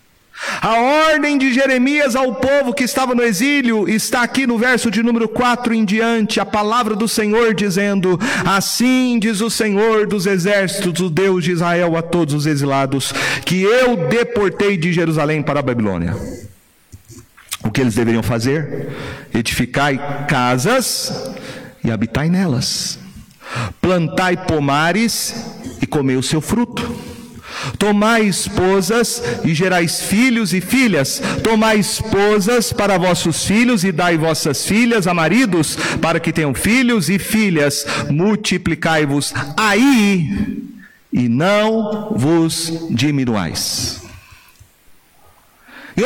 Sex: male